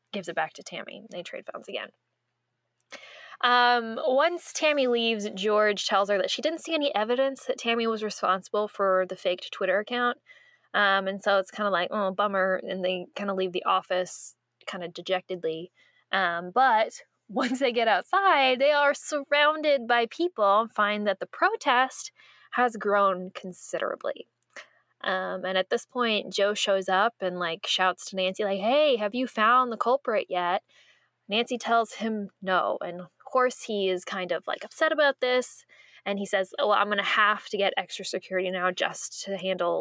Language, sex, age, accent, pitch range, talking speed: English, female, 10-29, American, 185-250 Hz, 180 wpm